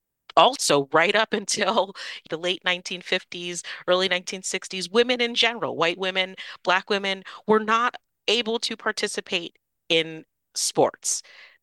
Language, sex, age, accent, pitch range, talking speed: English, female, 40-59, American, 145-185 Hz, 120 wpm